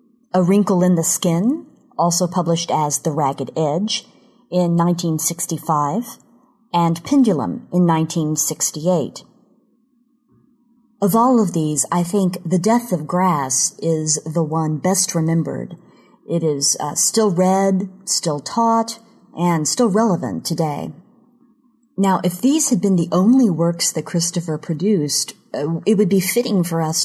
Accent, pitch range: American, 165-220 Hz